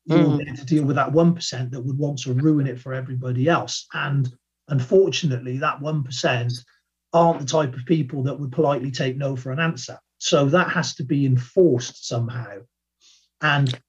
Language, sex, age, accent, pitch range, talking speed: English, male, 40-59, British, 130-165 Hz, 180 wpm